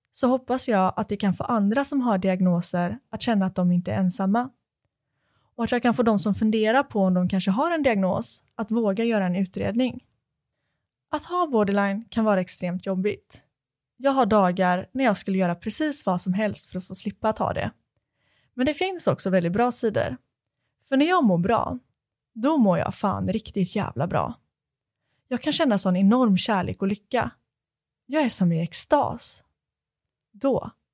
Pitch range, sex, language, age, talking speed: 185-245 Hz, female, Swedish, 20-39, 185 wpm